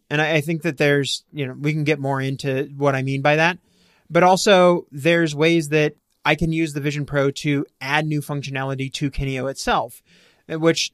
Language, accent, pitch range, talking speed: English, American, 135-160 Hz, 195 wpm